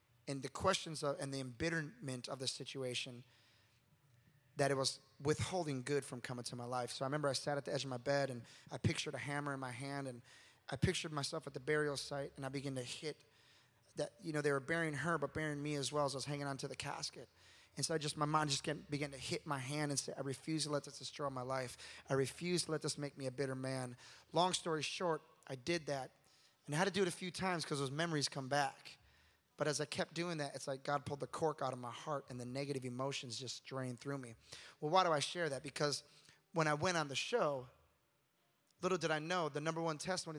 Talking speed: 250 wpm